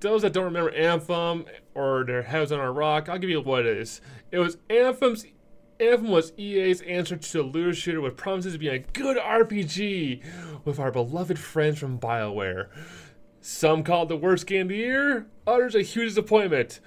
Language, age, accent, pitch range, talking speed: English, 30-49, American, 140-200 Hz, 190 wpm